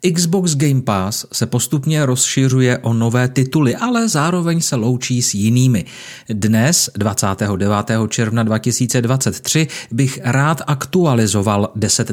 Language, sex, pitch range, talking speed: Czech, male, 115-150 Hz, 115 wpm